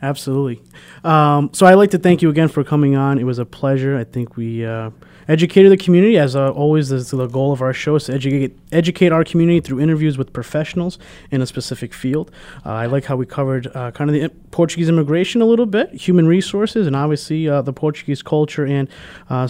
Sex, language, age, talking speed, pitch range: male, English, 30-49, 220 wpm, 130-165 Hz